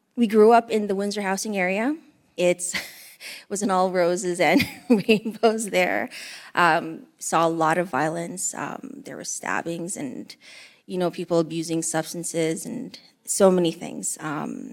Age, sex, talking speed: 20-39, female, 150 wpm